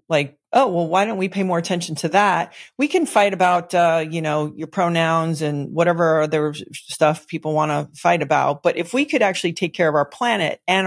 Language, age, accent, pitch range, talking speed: English, 40-59, American, 160-190 Hz, 220 wpm